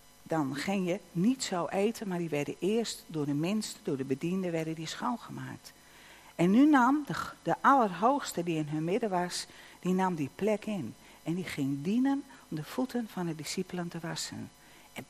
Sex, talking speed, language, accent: female, 190 wpm, Dutch, Dutch